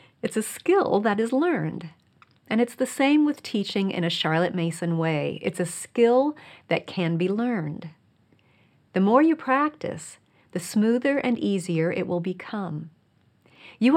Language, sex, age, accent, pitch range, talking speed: English, female, 40-59, American, 170-240 Hz, 155 wpm